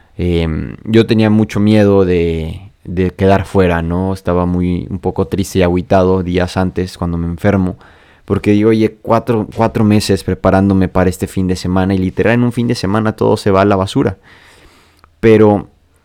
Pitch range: 90-100 Hz